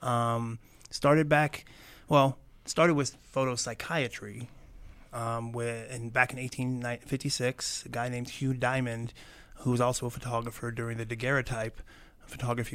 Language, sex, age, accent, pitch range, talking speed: English, male, 20-39, American, 120-130 Hz, 130 wpm